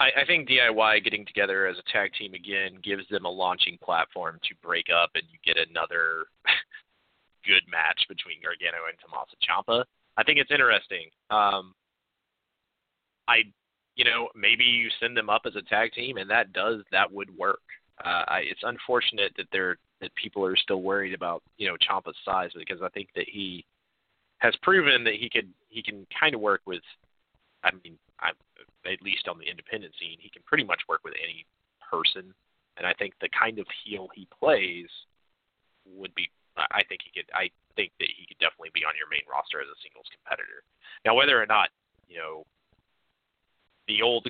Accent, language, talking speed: American, English, 190 wpm